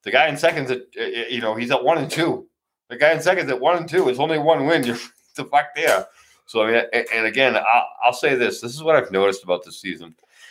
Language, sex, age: English, male, 30-49